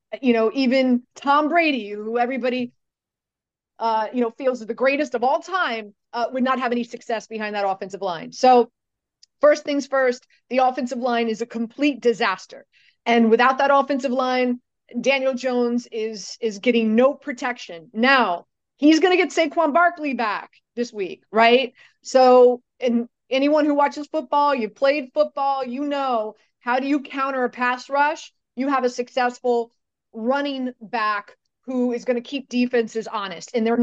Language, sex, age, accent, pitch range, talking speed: English, female, 30-49, American, 235-285 Hz, 165 wpm